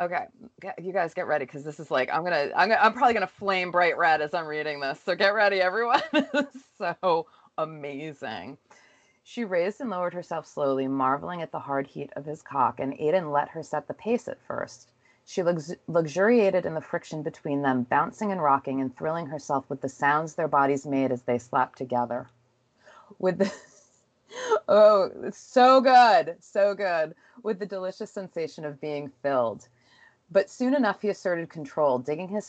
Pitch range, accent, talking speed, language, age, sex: 140-185 Hz, American, 185 wpm, English, 30-49, female